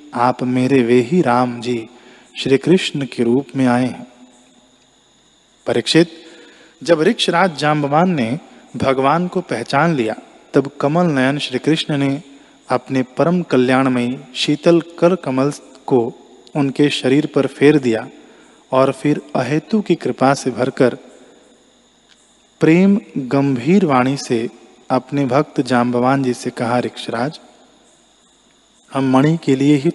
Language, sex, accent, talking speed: Hindi, male, native, 130 wpm